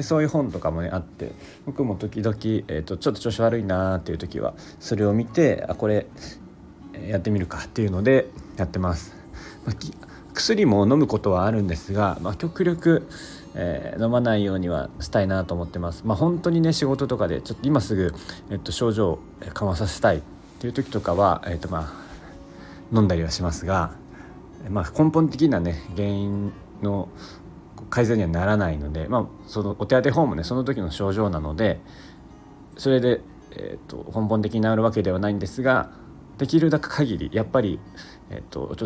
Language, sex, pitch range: Japanese, male, 90-115 Hz